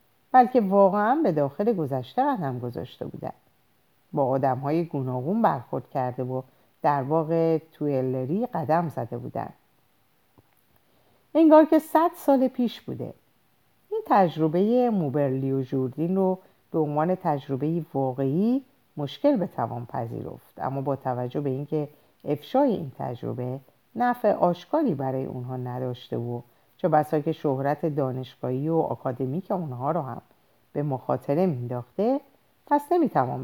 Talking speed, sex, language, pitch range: 125 wpm, female, Persian, 130-195 Hz